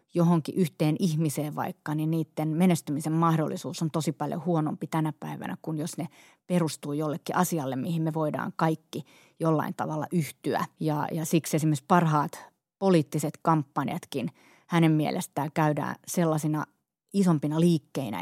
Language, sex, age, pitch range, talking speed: Finnish, female, 30-49, 155-170 Hz, 125 wpm